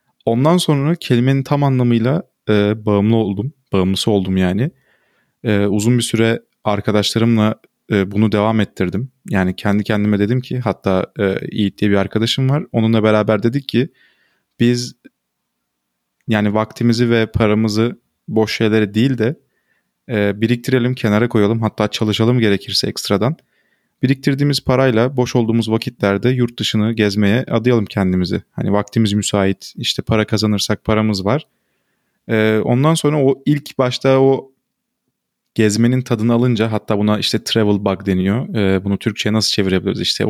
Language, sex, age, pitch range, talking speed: Turkish, male, 30-49, 105-125 Hz, 140 wpm